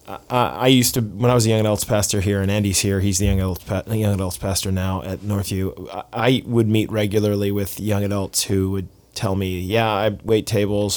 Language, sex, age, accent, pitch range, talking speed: English, male, 30-49, American, 95-110 Hz, 215 wpm